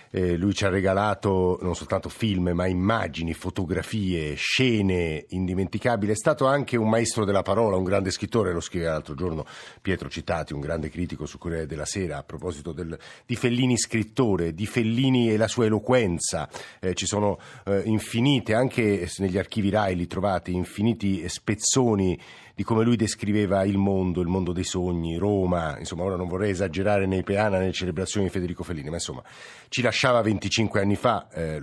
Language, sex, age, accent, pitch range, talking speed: Italian, male, 50-69, native, 90-110 Hz, 175 wpm